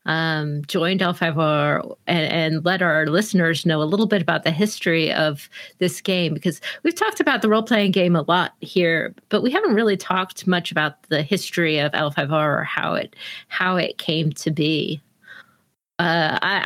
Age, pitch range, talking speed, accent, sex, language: 40-59, 165-205 Hz, 180 wpm, American, female, English